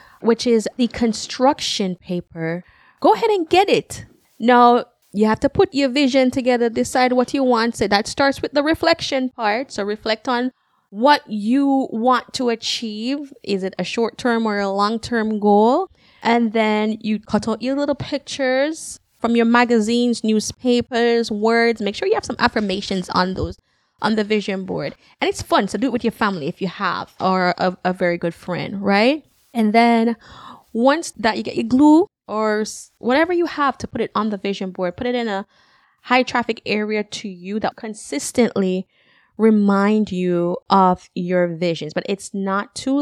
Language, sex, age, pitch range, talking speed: English, female, 20-39, 200-260 Hz, 180 wpm